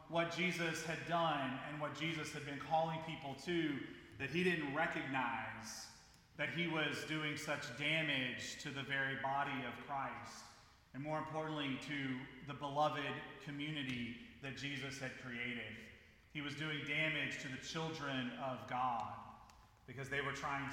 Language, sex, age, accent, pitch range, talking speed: English, male, 30-49, American, 135-155 Hz, 150 wpm